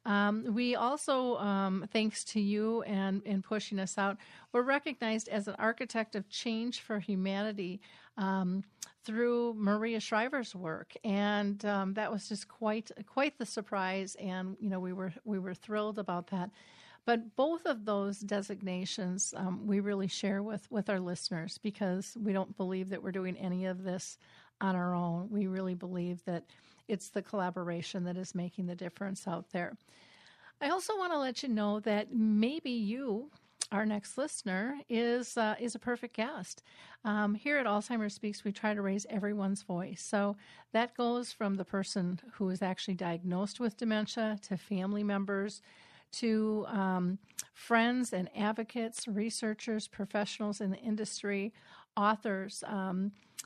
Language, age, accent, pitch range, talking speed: English, 40-59, American, 190-225 Hz, 160 wpm